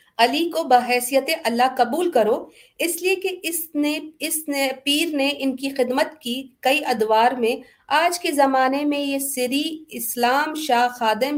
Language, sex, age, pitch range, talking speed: Urdu, female, 50-69, 230-295 Hz, 165 wpm